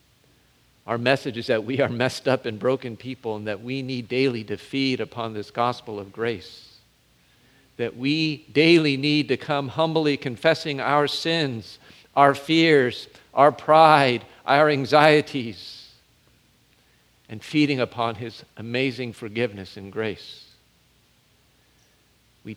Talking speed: 130 wpm